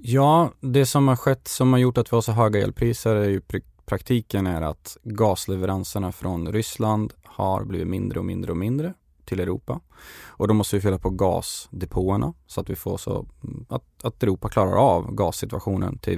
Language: Swedish